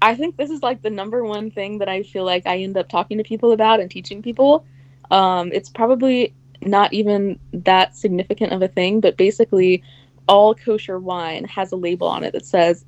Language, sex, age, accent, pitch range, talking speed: English, female, 20-39, American, 135-205 Hz, 210 wpm